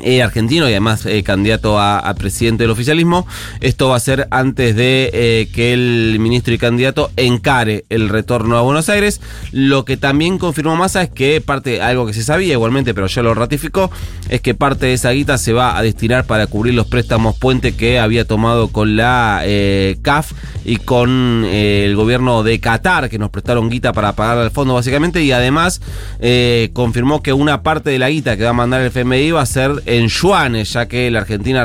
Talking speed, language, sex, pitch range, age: 205 wpm, Spanish, male, 110-140 Hz, 30-49